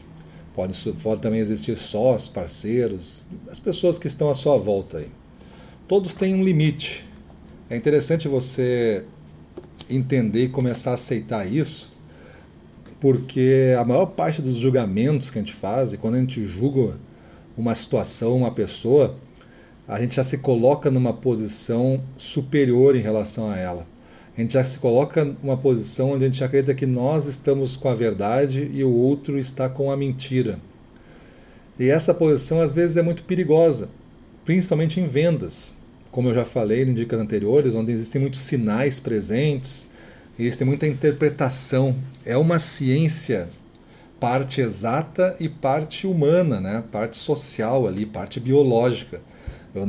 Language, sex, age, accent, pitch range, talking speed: Portuguese, male, 40-59, Brazilian, 115-145 Hz, 145 wpm